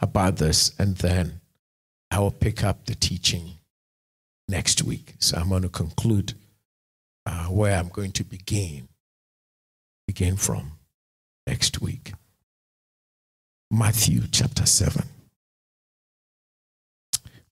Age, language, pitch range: 50-69, English, 75-110 Hz